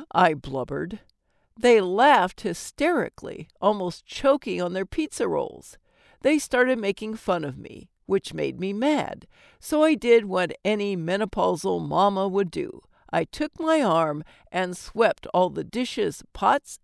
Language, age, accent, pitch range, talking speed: English, 60-79, American, 190-305 Hz, 145 wpm